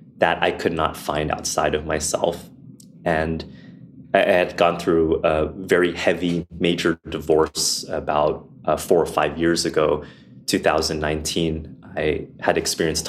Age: 20-39